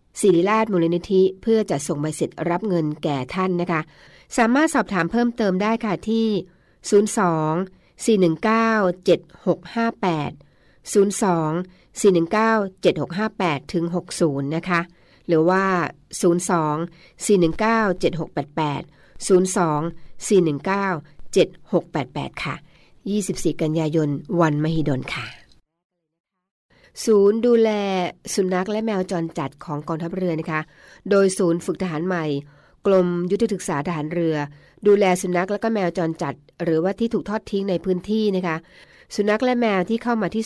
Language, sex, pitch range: Thai, female, 160-200 Hz